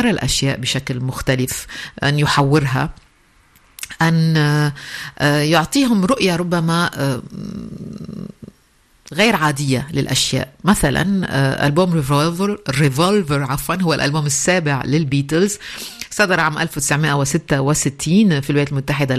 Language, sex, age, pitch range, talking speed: Arabic, female, 50-69, 140-170 Hz, 80 wpm